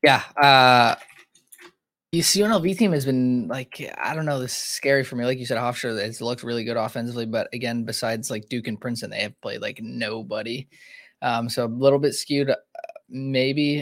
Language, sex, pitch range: English, male, 105-130 Hz